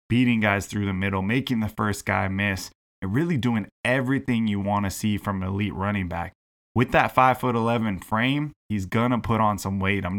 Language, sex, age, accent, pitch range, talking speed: English, male, 20-39, American, 95-110 Hz, 205 wpm